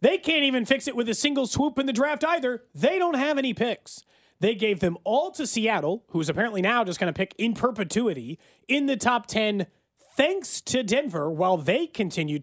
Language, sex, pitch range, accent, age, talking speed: English, male, 180-265 Hz, American, 30-49, 205 wpm